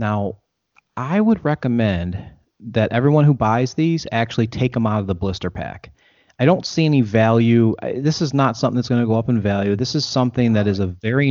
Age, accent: 30-49, American